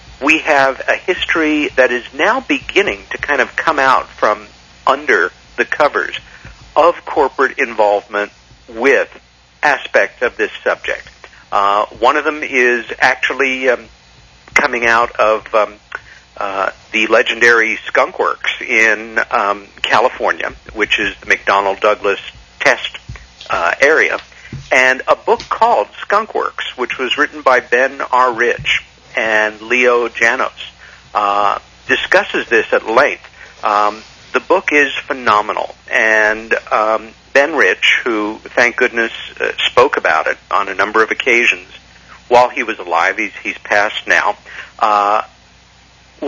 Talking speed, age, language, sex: 135 wpm, 50-69, English, male